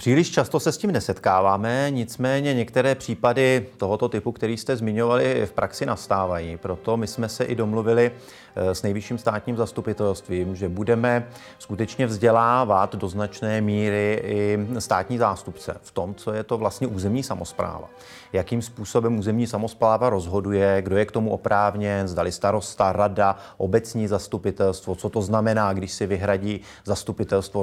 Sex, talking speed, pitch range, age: male, 145 wpm, 100-120 Hz, 30-49